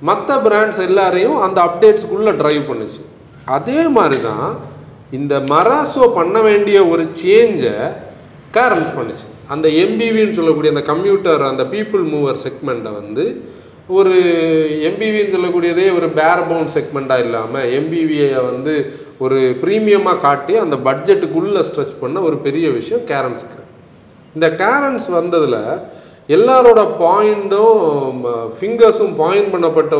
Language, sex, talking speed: Tamil, male, 110 wpm